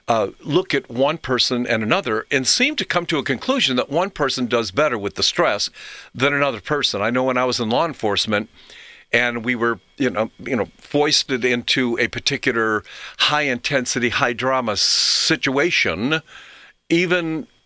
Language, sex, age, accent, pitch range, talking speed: English, male, 50-69, American, 115-150 Hz, 170 wpm